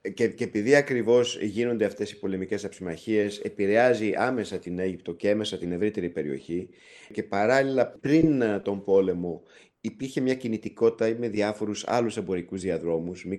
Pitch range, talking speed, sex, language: 95-120 Hz, 145 wpm, male, Greek